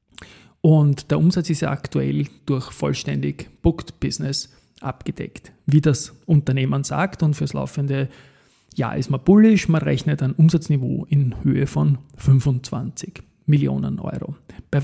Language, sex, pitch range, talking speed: German, male, 135-165 Hz, 135 wpm